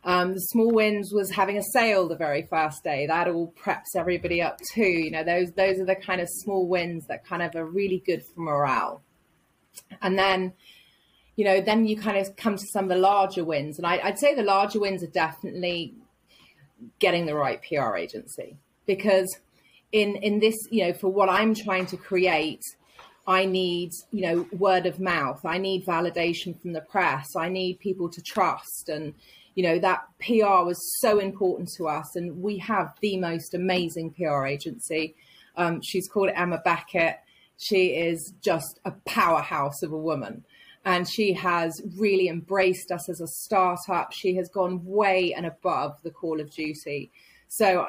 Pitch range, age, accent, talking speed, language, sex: 165-195 Hz, 30-49, British, 185 wpm, English, female